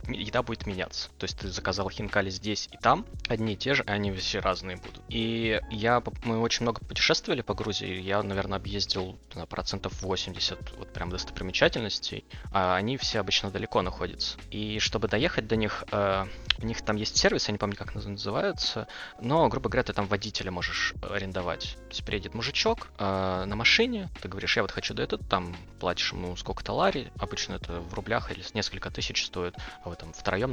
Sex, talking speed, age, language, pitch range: male, 190 wpm, 20-39, Russian, 95-110 Hz